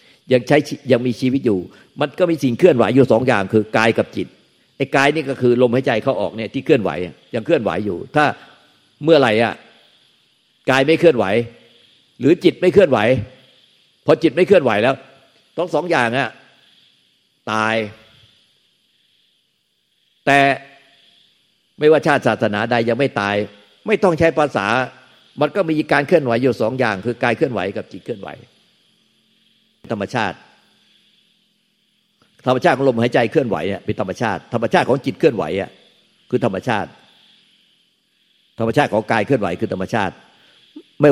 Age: 60-79